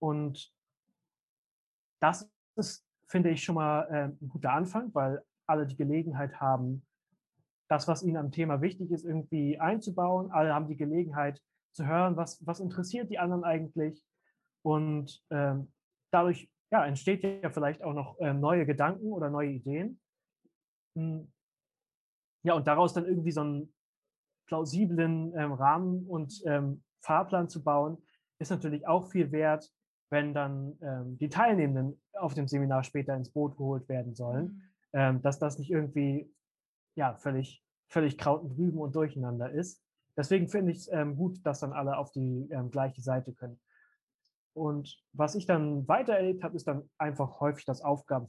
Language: German